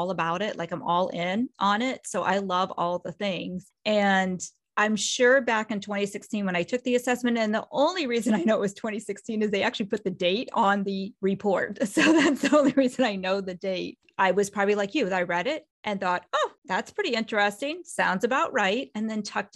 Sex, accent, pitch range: female, American, 185-230 Hz